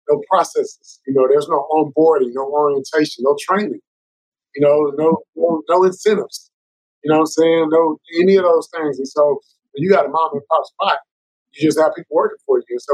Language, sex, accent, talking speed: English, male, American, 215 wpm